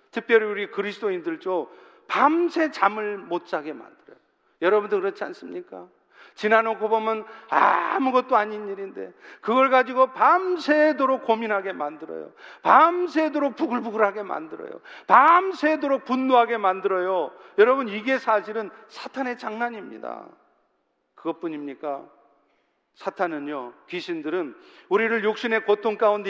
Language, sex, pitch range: Korean, male, 200-285 Hz